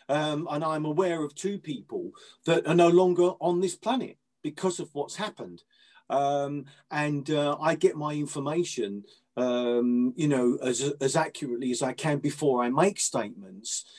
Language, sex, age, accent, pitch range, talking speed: English, male, 40-59, British, 135-175 Hz, 165 wpm